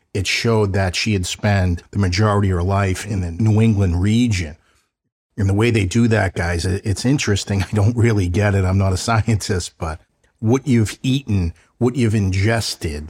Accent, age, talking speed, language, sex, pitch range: American, 50-69, 190 wpm, English, male, 90-115 Hz